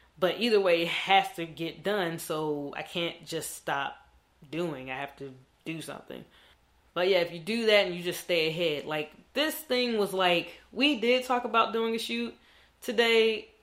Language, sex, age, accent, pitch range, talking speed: English, female, 20-39, American, 155-200 Hz, 190 wpm